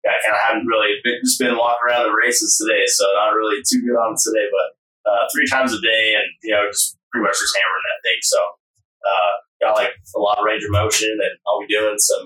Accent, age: American, 20-39